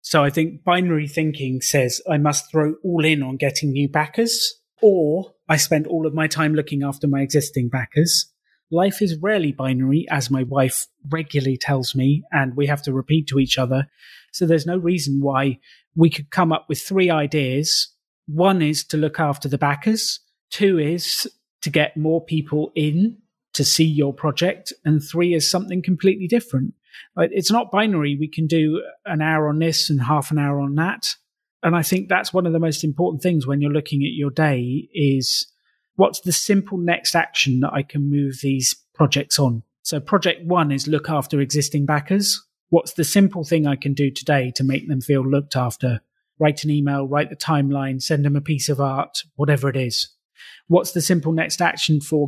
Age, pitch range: 30-49, 140-170 Hz